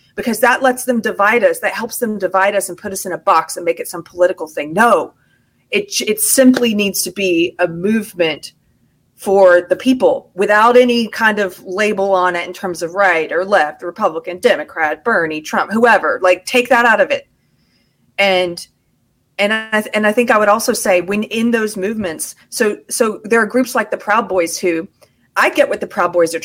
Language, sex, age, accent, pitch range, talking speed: English, female, 30-49, American, 180-245 Hz, 205 wpm